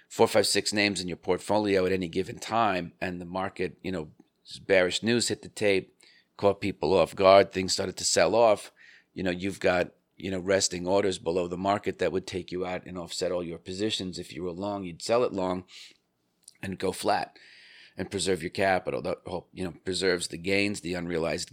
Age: 40-59